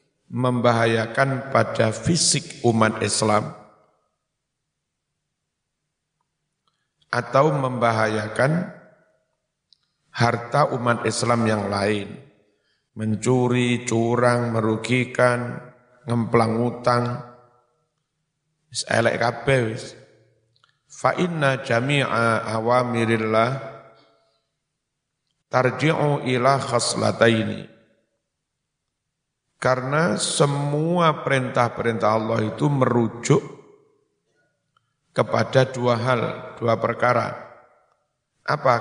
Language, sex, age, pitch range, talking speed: Indonesian, male, 50-69, 115-135 Hz, 55 wpm